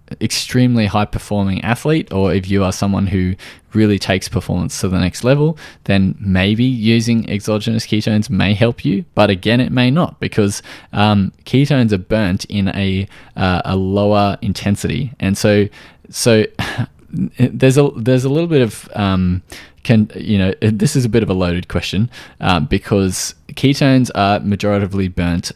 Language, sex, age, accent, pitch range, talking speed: English, male, 20-39, Australian, 95-115 Hz, 160 wpm